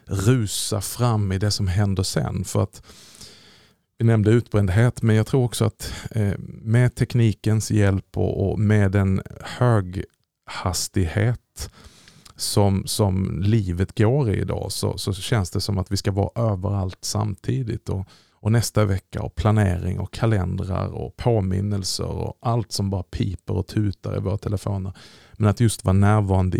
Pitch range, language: 95-115 Hz, Swedish